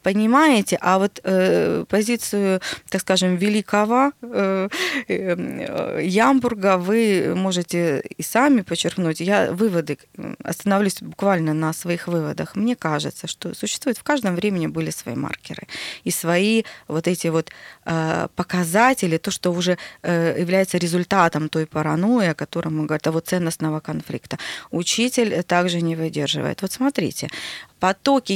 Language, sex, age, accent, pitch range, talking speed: Russian, female, 20-39, native, 165-220 Hz, 130 wpm